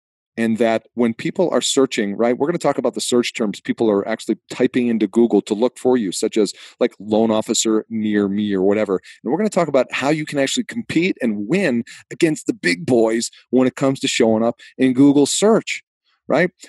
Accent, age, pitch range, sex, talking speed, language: American, 40-59, 115-150 Hz, male, 220 wpm, English